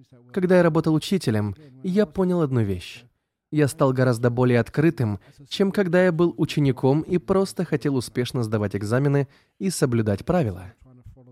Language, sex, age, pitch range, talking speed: Russian, male, 20-39, 120-165 Hz, 145 wpm